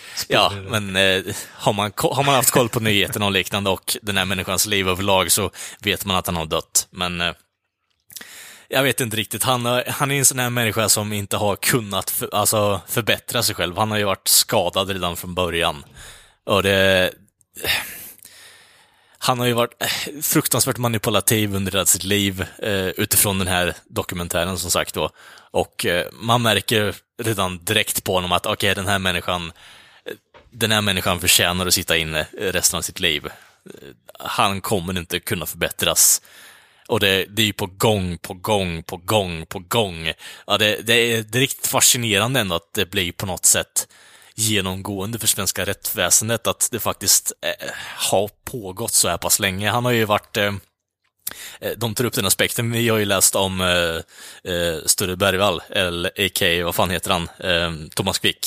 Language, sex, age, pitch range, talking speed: Swedish, male, 20-39, 90-115 Hz, 165 wpm